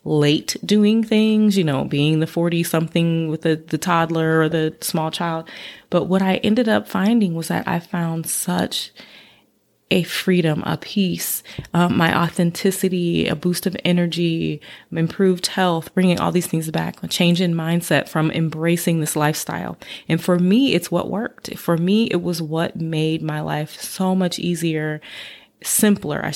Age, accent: 20-39, American